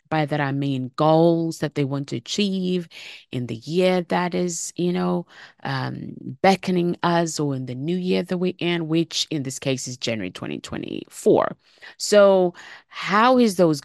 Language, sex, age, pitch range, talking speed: English, female, 30-49, 125-165 Hz, 170 wpm